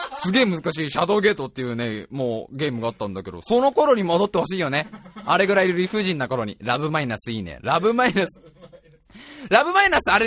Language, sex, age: Japanese, male, 20-39